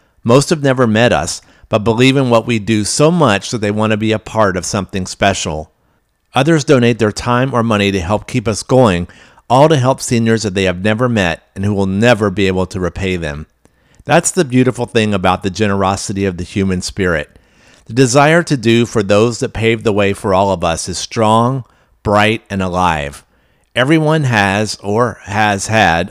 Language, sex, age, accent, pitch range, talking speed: English, male, 50-69, American, 90-115 Hz, 200 wpm